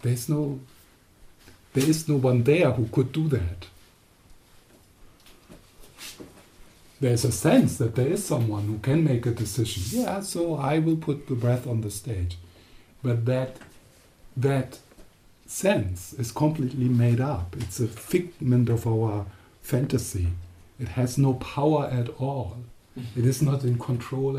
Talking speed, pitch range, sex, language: 145 wpm, 110-140 Hz, male, English